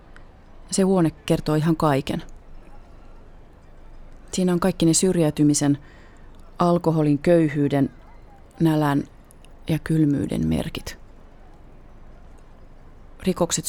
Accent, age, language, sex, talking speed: native, 30-49, Finnish, female, 75 wpm